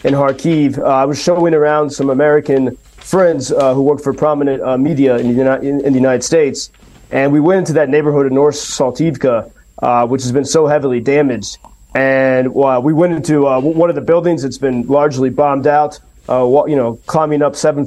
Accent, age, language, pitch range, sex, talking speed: American, 30-49, English, 130-155 Hz, male, 210 wpm